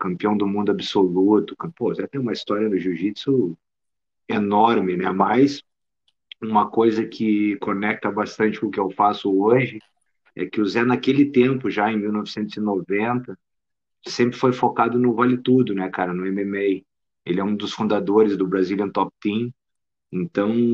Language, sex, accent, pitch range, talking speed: Portuguese, male, Brazilian, 95-115 Hz, 155 wpm